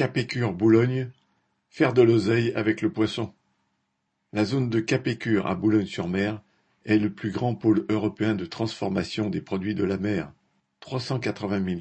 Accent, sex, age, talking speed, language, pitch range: French, male, 50-69, 135 wpm, French, 100-115 Hz